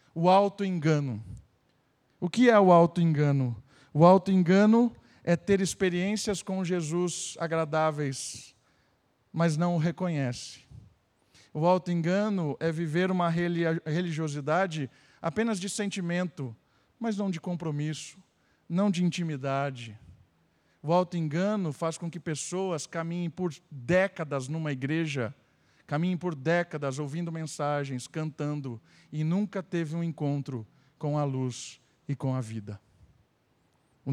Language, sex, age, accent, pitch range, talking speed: Portuguese, male, 50-69, Brazilian, 130-170 Hz, 115 wpm